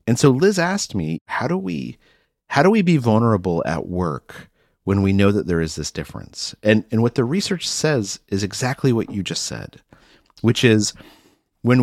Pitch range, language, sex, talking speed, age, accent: 85-130 Hz, English, male, 195 wpm, 40-59, American